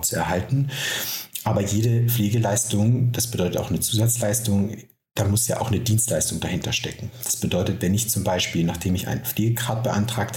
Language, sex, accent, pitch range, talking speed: German, male, German, 95-120 Hz, 170 wpm